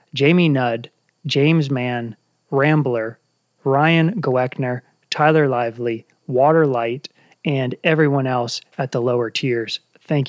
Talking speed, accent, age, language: 105 wpm, American, 30-49, English